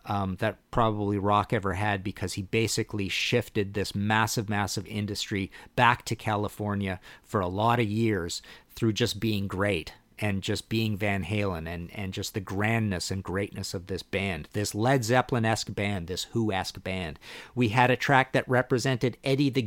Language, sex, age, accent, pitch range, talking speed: English, male, 50-69, American, 105-135 Hz, 170 wpm